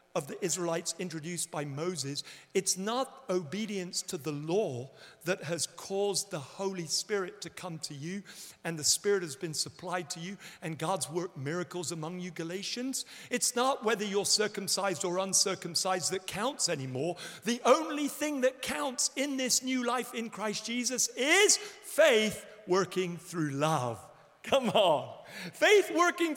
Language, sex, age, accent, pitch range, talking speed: English, male, 50-69, British, 180-255 Hz, 155 wpm